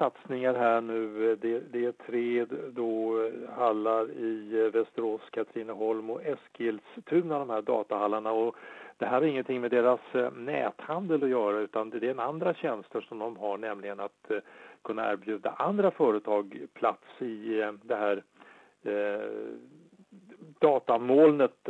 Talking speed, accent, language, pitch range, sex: 130 wpm, Norwegian, English, 105-130 Hz, male